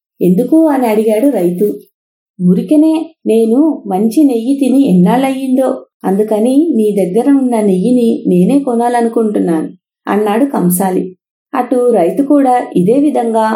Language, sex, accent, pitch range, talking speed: English, female, Indian, 200-265 Hz, 135 wpm